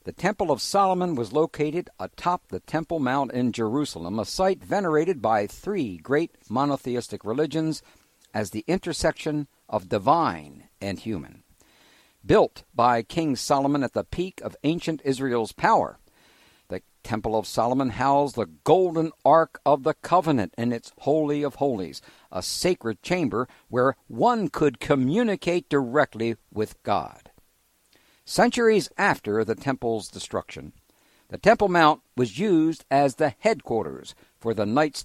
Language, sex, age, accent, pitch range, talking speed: English, male, 60-79, American, 120-155 Hz, 135 wpm